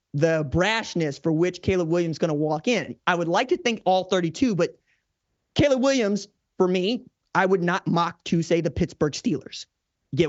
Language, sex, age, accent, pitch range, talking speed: English, male, 30-49, American, 170-220 Hz, 200 wpm